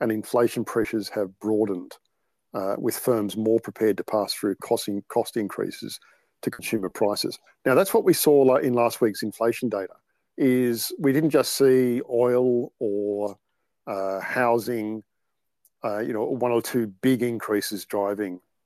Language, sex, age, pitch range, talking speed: English, male, 50-69, 105-125 Hz, 150 wpm